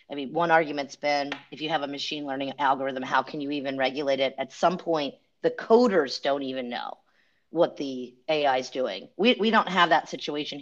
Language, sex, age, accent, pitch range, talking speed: English, female, 40-59, American, 130-160 Hz, 210 wpm